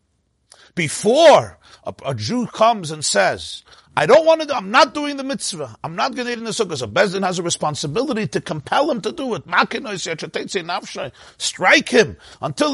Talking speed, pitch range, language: 185 wpm, 120-175 Hz, English